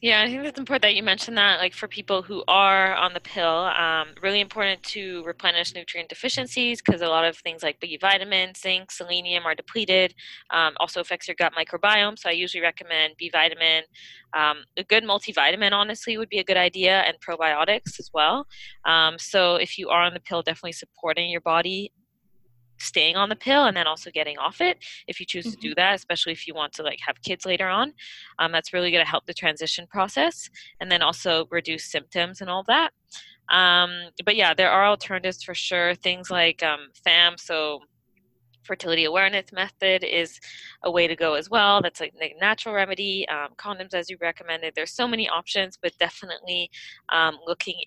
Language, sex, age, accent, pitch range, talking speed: English, female, 20-39, American, 165-195 Hz, 195 wpm